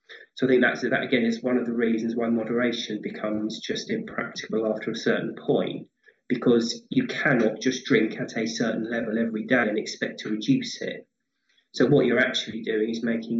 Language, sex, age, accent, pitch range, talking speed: English, male, 20-39, British, 115-125 Hz, 195 wpm